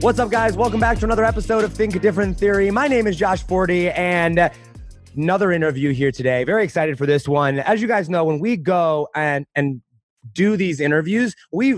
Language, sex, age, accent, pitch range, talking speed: English, male, 30-49, American, 140-190 Hz, 210 wpm